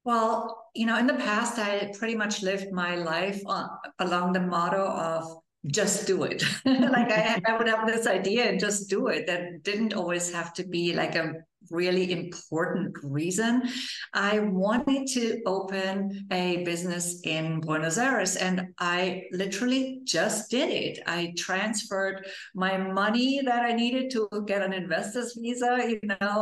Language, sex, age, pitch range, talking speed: English, female, 50-69, 175-215 Hz, 165 wpm